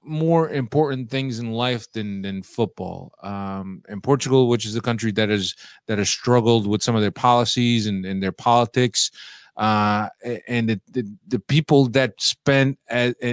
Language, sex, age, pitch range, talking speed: English, male, 30-49, 110-130 Hz, 170 wpm